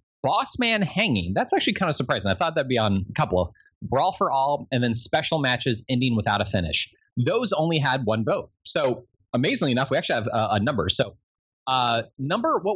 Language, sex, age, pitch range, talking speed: English, male, 30-49, 110-150 Hz, 210 wpm